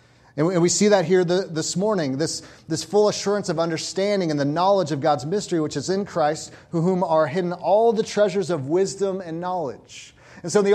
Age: 30-49